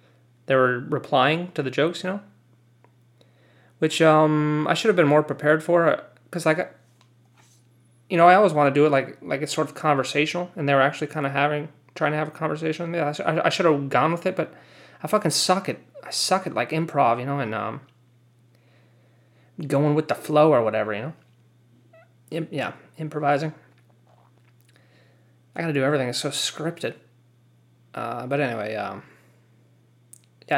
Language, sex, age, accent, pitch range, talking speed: English, male, 30-49, American, 120-155 Hz, 180 wpm